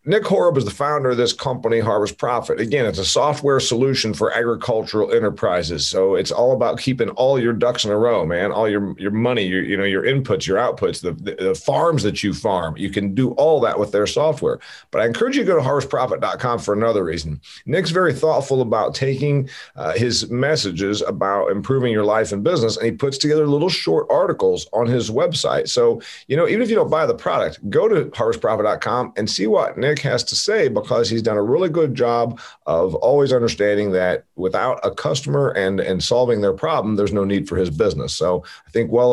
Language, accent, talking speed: English, American, 215 wpm